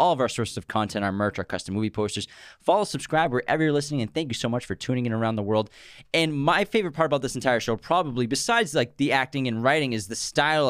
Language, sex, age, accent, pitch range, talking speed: English, male, 20-39, American, 115-140 Hz, 260 wpm